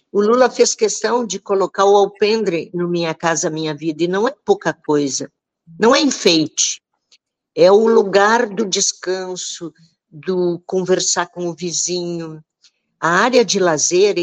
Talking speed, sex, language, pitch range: 150 wpm, female, Portuguese, 165-225 Hz